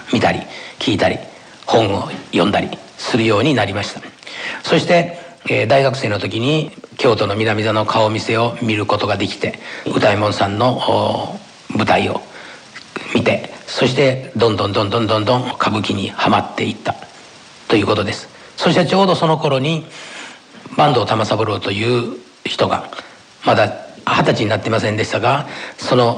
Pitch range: 105-135 Hz